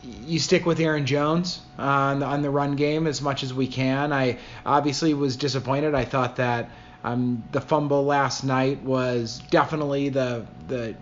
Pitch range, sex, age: 125-145 Hz, male, 30-49